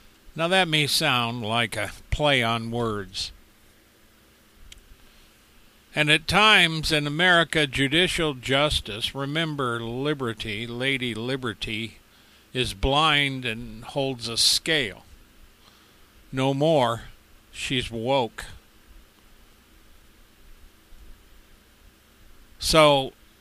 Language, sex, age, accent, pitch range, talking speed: English, male, 50-69, American, 110-145 Hz, 80 wpm